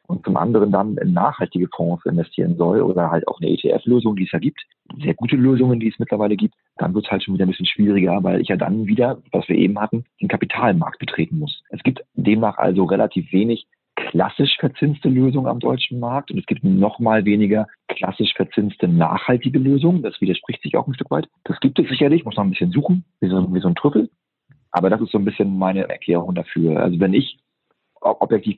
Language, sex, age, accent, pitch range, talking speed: German, male, 40-59, German, 95-125 Hz, 215 wpm